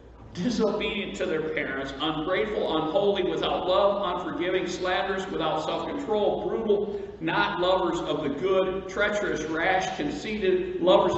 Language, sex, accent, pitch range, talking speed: English, male, American, 145-185 Hz, 120 wpm